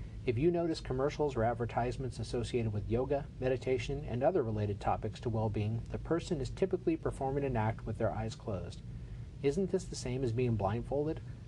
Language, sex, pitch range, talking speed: English, male, 115-135 Hz, 180 wpm